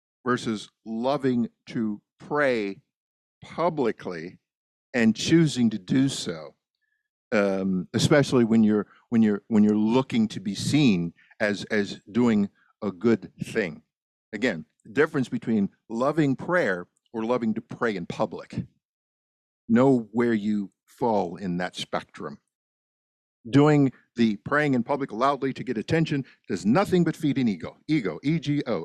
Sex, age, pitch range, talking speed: male, 50-69, 110-150 Hz, 135 wpm